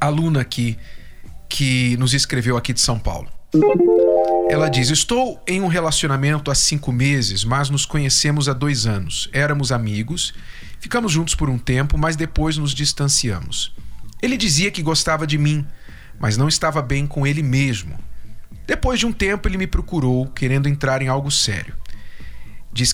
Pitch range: 125-165 Hz